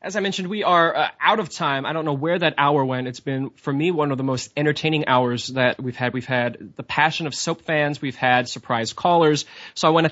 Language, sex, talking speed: English, male, 260 wpm